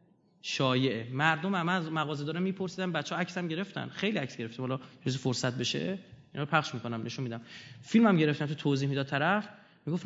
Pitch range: 135-190 Hz